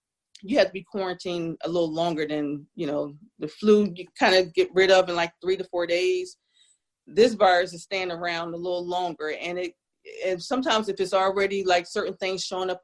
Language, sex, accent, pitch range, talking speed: English, female, American, 165-200 Hz, 210 wpm